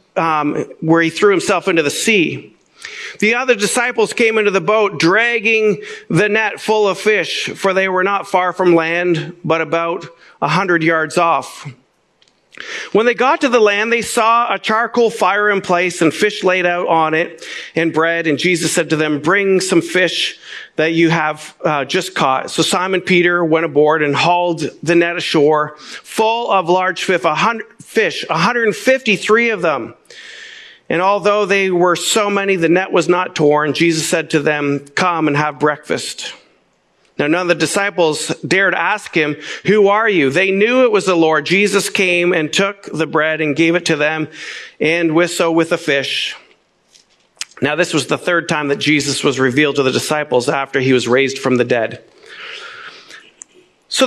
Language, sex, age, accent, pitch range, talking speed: English, male, 50-69, American, 160-210 Hz, 180 wpm